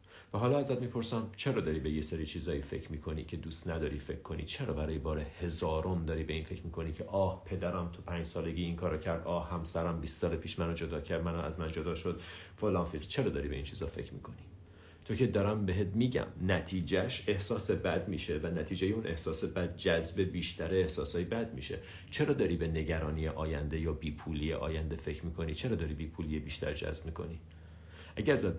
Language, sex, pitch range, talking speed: Persian, male, 80-100 Hz, 195 wpm